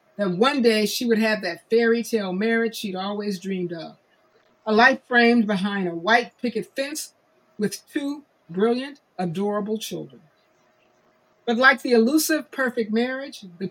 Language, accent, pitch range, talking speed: English, American, 190-240 Hz, 150 wpm